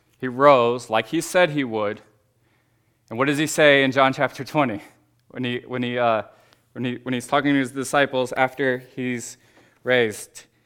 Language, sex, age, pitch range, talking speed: English, male, 20-39, 110-125 Hz, 145 wpm